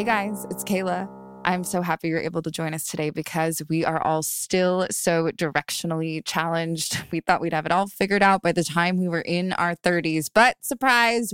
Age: 20-39